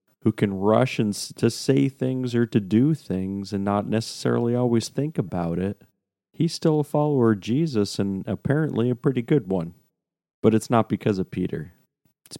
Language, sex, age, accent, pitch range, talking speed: English, male, 40-59, American, 95-115 Hz, 180 wpm